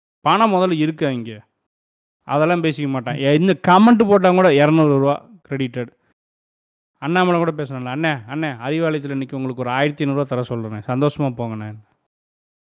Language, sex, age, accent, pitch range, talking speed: Tamil, male, 30-49, native, 130-170 Hz, 130 wpm